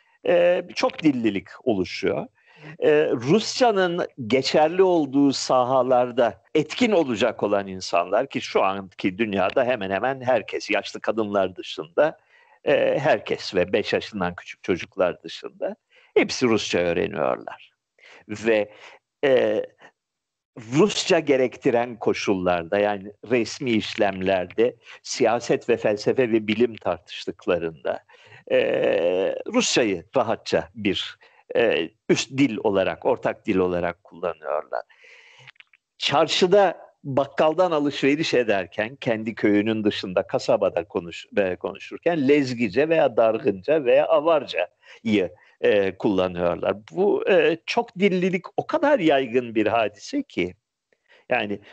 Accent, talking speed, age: native, 105 wpm, 50-69